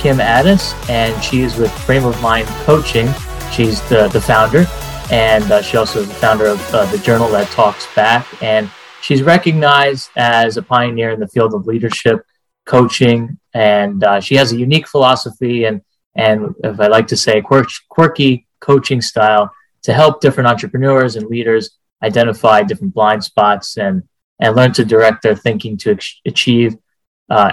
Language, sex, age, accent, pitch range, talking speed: English, male, 30-49, American, 110-135 Hz, 170 wpm